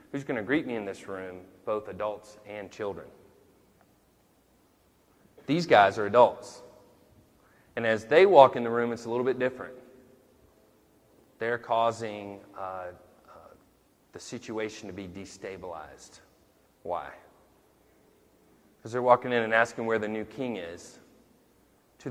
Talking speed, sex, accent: 135 wpm, male, American